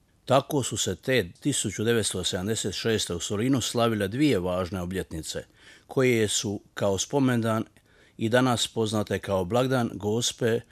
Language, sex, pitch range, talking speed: Croatian, male, 95-120 Hz, 120 wpm